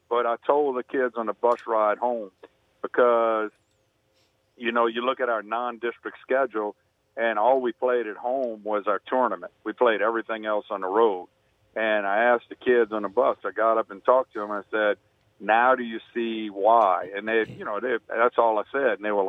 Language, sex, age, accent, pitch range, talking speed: English, male, 50-69, American, 105-125 Hz, 220 wpm